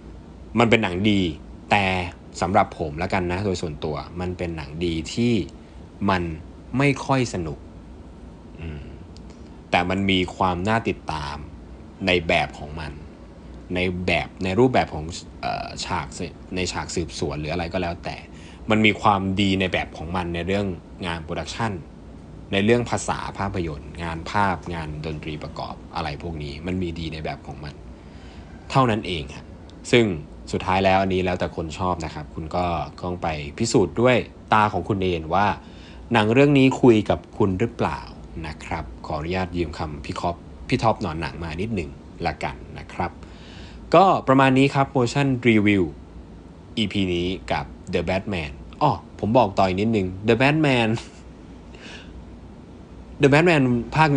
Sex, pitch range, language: male, 80-105 Hz, Thai